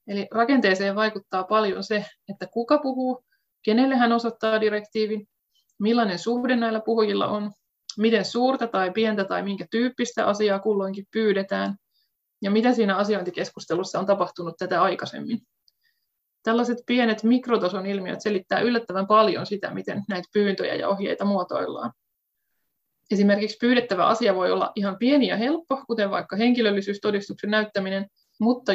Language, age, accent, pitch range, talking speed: Finnish, 20-39, native, 195-230 Hz, 130 wpm